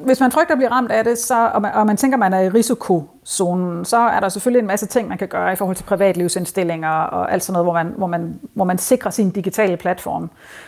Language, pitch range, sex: Danish, 180-230 Hz, female